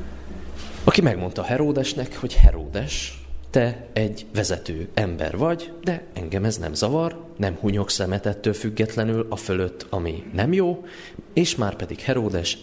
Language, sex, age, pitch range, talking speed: Hungarian, male, 30-49, 85-115 Hz, 130 wpm